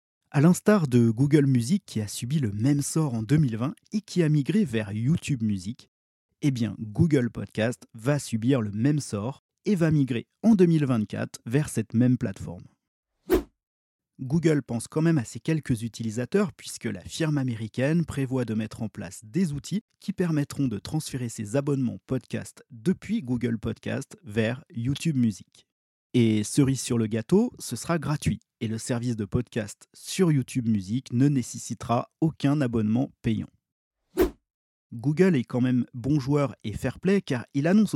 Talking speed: 160 wpm